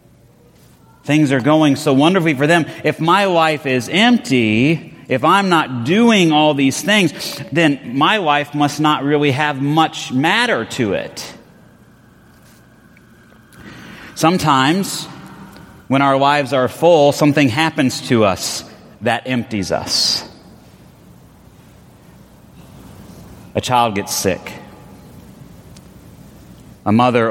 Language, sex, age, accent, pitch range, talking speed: English, male, 30-49, American, 130-175 Hz, 110 wpm